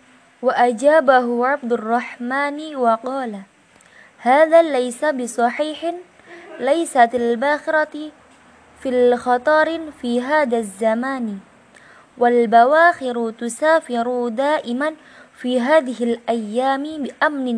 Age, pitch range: 20-39, 230-295 Hz